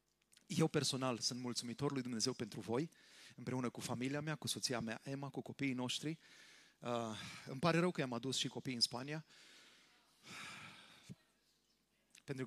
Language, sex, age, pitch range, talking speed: Romanian, male, 30-49, 120-145 Hz, 150 wpm